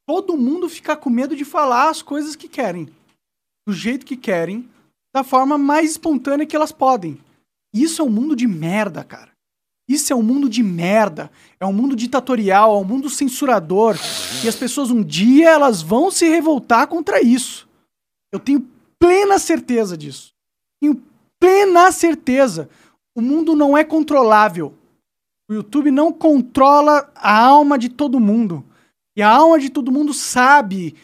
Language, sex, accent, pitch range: Portuguese, male, Brazilian, 230-300 Hz